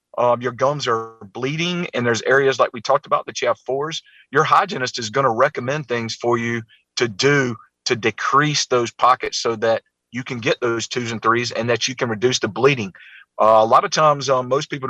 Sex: male